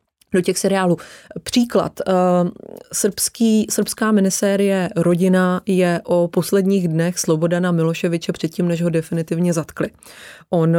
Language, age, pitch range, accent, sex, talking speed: Czech, 20-39, 170-185 Hz, native, female, 110 wpm